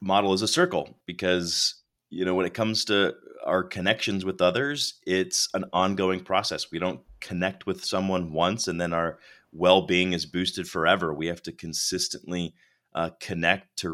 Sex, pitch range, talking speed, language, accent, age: male, 85-95 Hz, 170 wpm, English, American, 30-49